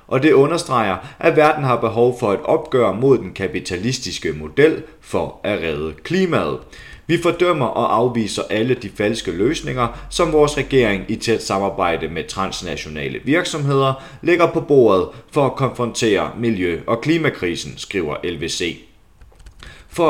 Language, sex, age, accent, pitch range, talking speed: Danish, male, 30-49, native, 100-140 Hz, 140 wpm